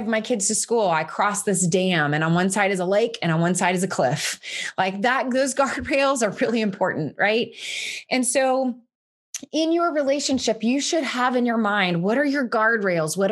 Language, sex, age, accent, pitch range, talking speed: English, female, 20-39, American, 200-255 Hz, 205 wpm